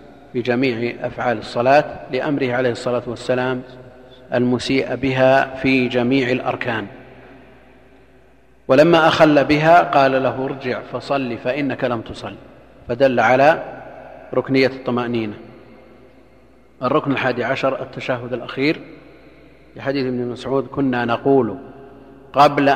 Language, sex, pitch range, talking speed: Arabic, male, 125-135 Hz, 100 wpm